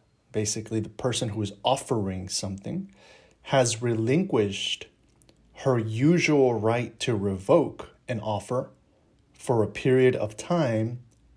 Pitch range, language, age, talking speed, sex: 105-130 Hz, English, 30-49, 110 wpm, male